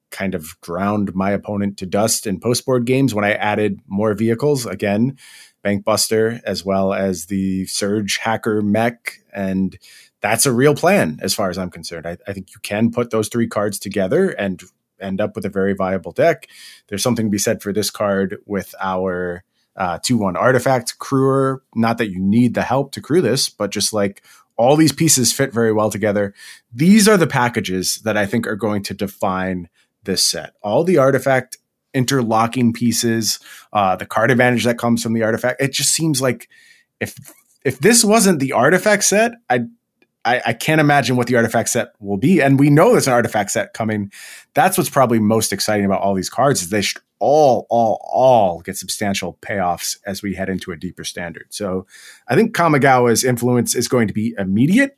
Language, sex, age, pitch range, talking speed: English, male, 30-49, 100-130 Hz, 190 wpm